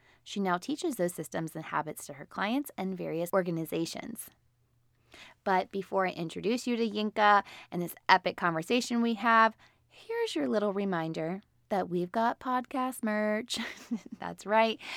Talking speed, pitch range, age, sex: 150 wpm, 180-245 Hz, 20-39, female